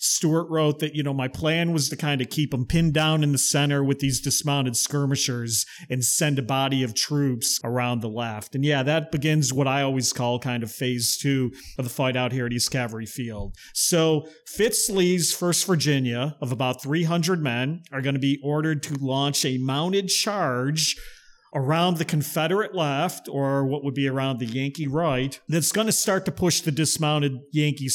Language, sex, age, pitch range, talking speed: English, male, 40-59, 130-160 Hz, 200 wpm